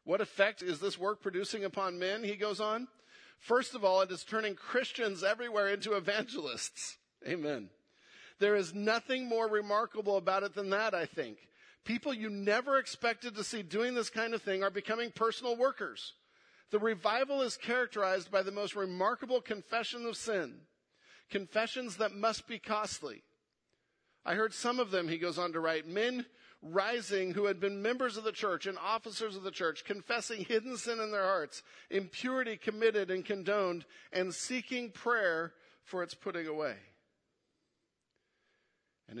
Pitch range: 185-230 Hz